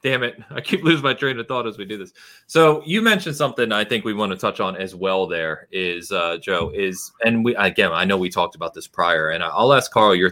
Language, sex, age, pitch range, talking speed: English, male, 30-49, 90-130 Hz, 265 wpm